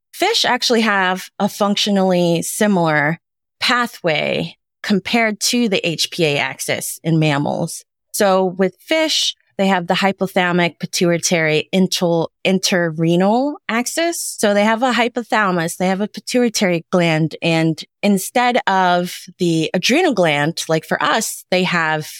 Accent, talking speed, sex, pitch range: American, 115 wpm, female, 165-215 Hz